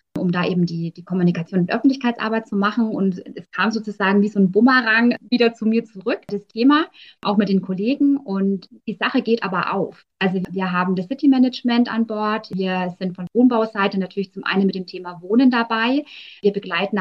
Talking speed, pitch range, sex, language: 195 wpm, 190-230 Hz, female, German